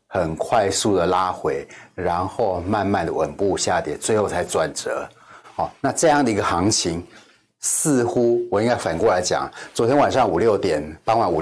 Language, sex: Chinese, male